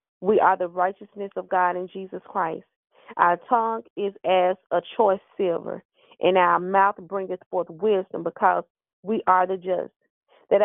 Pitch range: 185-215 Hz